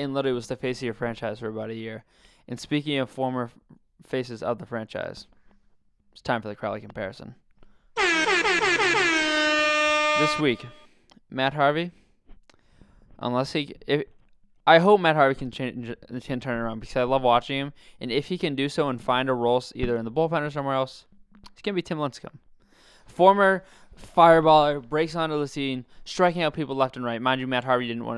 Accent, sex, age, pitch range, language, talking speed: American, male, 20-39, 120-150 Hz, English, 190 wpm